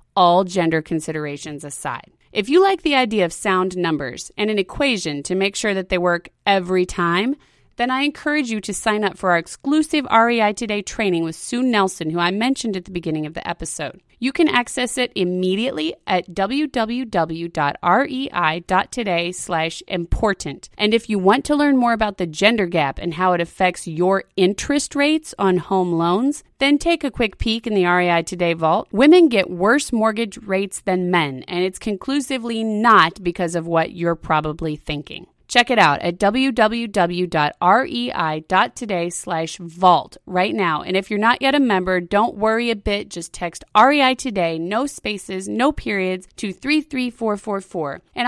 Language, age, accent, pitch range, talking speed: English, 30-49, American, 175-245 Hz, 170 wpm